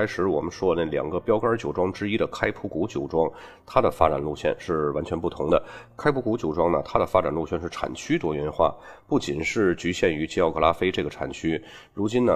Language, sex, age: Chinese, male, 30-49